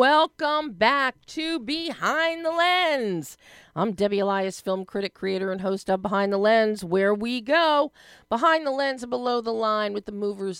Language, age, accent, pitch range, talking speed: English, 40-59, American, 160-240 Hz, 175 wpm